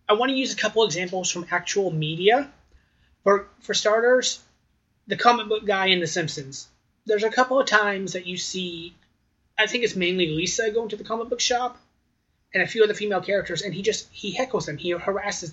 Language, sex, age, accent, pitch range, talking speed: English, male, 30-49, American, 160-210 Hz, 205 wpm